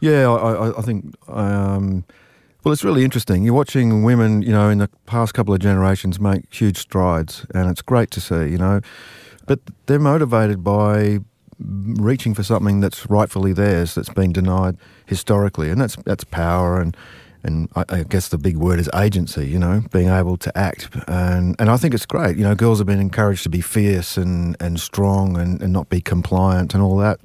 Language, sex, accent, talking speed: English, male, Australian, 200 wpm